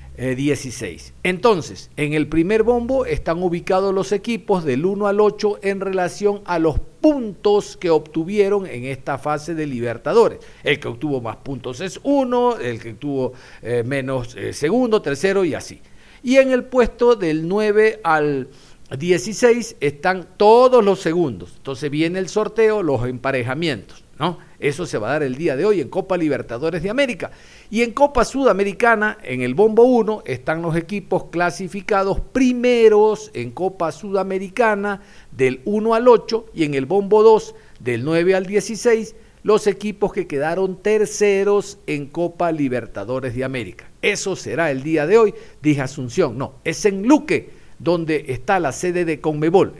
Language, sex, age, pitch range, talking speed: Spanish, male, 50-69, 145-215 Hz, 160 wpm